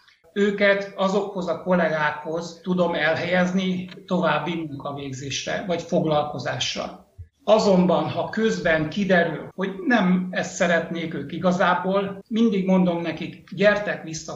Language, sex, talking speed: Hungarian, male, 105 wpm